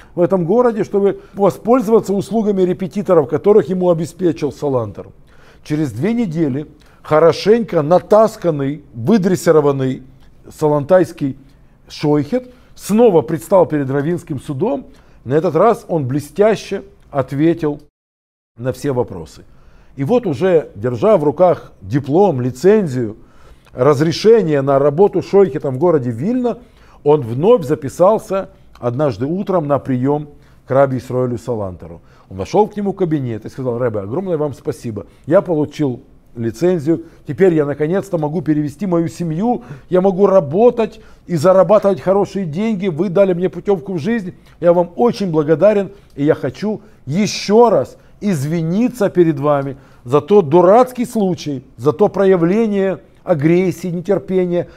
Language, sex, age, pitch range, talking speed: Russian, male, 50-69, 140-195 Hz, 125 wpm